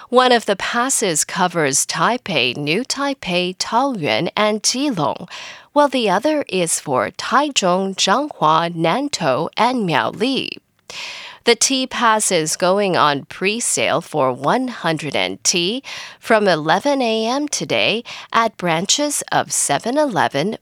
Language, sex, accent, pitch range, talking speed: English, female, American, 175-265 Hz, 115 wpm